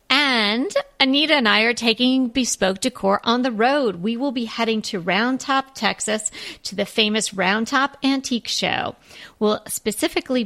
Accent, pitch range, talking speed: American, 195-255 Hz, 160 wpm